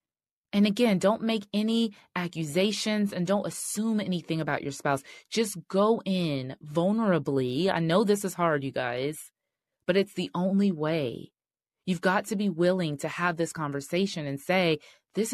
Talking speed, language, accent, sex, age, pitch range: 160 wpm, English, American, female, 20-39, 155-200 Hz